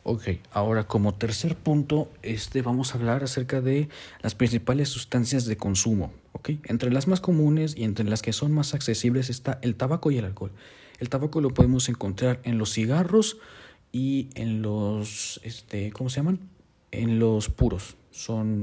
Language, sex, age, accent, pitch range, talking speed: Spanish, male, 40-59, Mexican, 100-130 Hz, 170 wpm